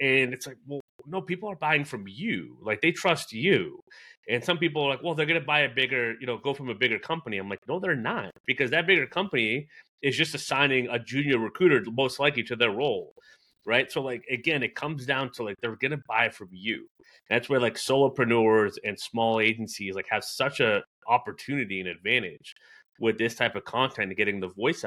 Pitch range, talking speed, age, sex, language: 110-140 Hz, 220 wpm, 30-49, male, English